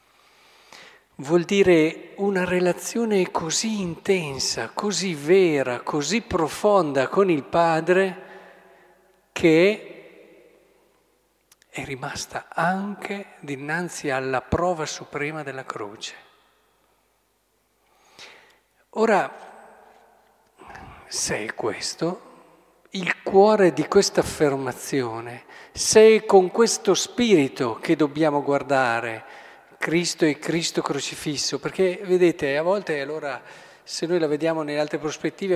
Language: Italian